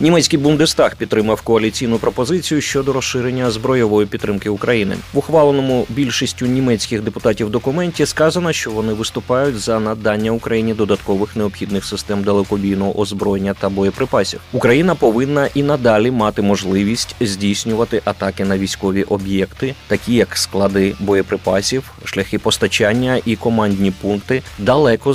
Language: Ukrainian